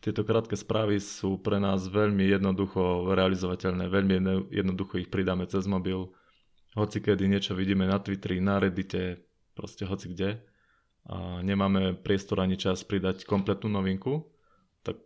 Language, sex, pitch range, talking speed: Slovak, male, 95-100 Hz, 140 wpm